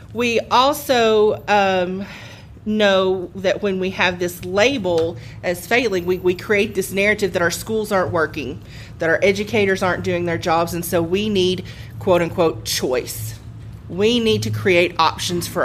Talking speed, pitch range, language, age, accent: 155 wpm, 155-185 Hz, English, 30-49, American